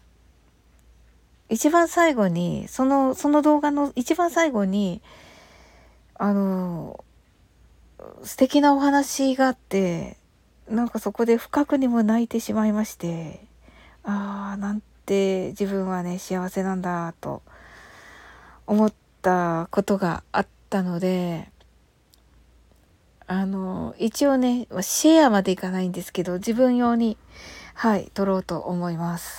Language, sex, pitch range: Japanese, female, 180-230 Hz